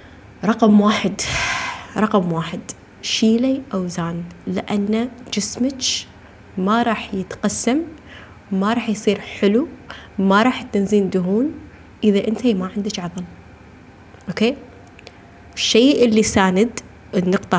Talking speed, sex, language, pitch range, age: 100 wpm, female, Arabic, 145-220 Hz, 20-39